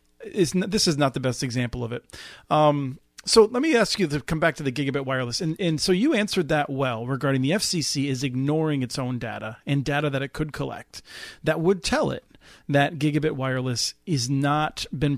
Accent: American